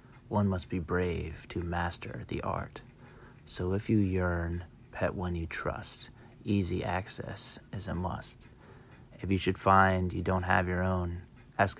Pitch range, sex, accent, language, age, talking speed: 90-120 Hz, male, American, English, 30-49, 160 wpm